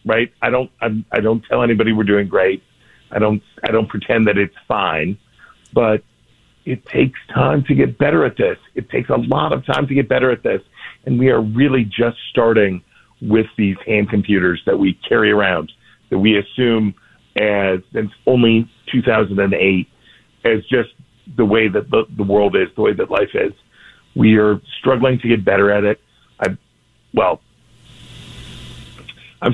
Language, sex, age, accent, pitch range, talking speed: English, male, 50-69, American, 100-115 Hz, 175 wpm